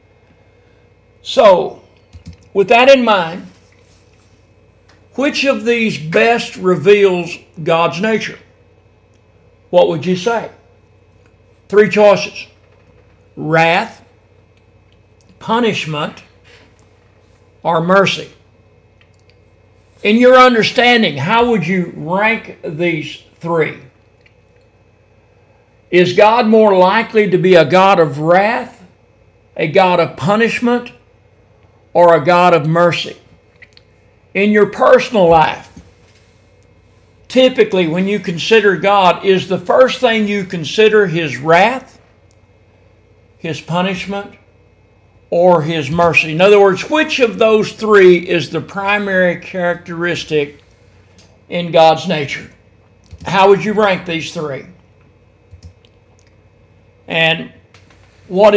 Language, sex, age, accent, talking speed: English, male, 60-79, American, 95 wpm